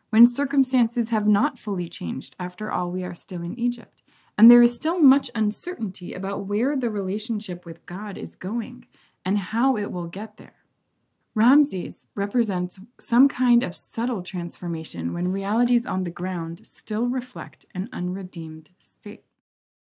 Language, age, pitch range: English, 20-39, 185-240 Hz